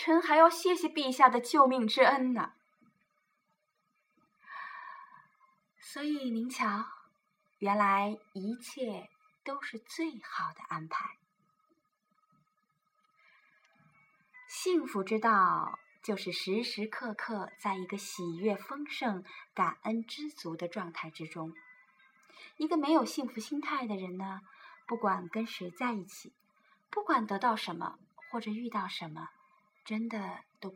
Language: Chinese